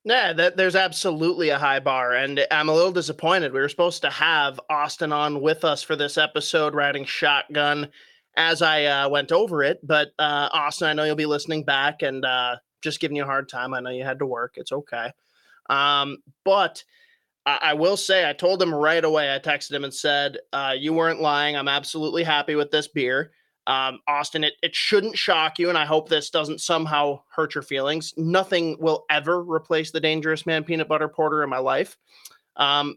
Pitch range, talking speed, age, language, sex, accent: 140-165 Hz, 200 wpm, 30-49, English, male, American